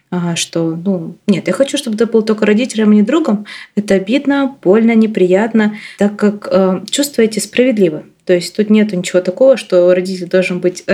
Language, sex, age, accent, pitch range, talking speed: Russian, female, 20-39, native, 185-215 Hz, 185 wpm